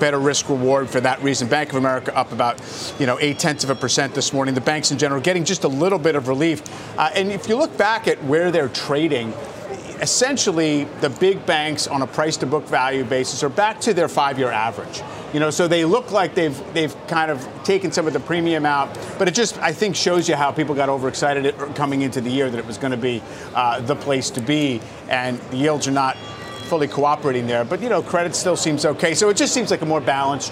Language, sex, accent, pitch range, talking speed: English, male, American, 130-165 Hz, 245 wpm